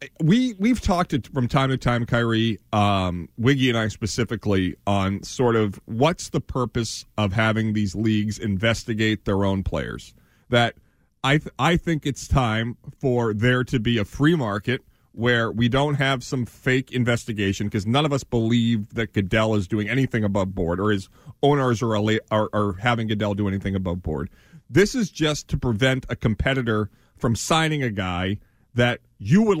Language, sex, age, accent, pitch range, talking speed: English, male, 40-59, American, 105-140 Hz, 180 wpm